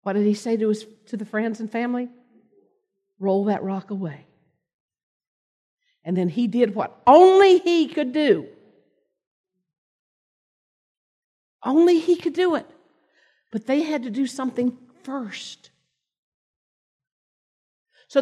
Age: 50-69